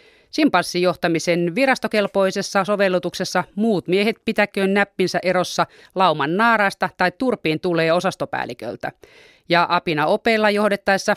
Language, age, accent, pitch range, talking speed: Finnish, 30-49, native, 155-200 Hz, 100 wpm